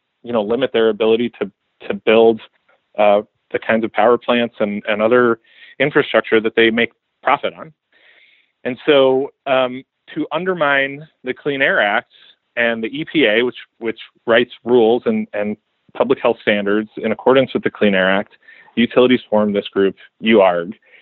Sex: male